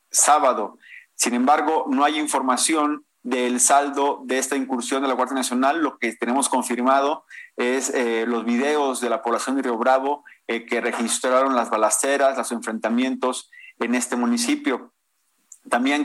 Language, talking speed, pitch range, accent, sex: Spanish, 150 wpm, 120-145 Hz, Mexican, male